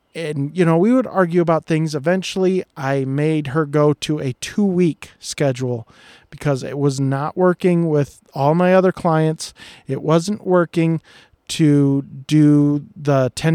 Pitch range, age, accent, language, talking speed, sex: 145-175 Hz, 40-59, American, English, 145 wpm, male